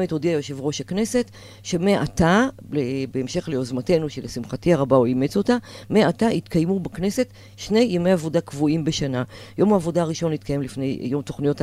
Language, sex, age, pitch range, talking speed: Hebrew, female, 40-59, 140-205 Hz, 145 wpm